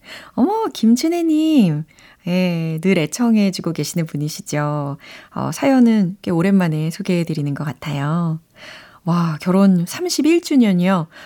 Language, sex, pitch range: Korean, female, 160-225 Hz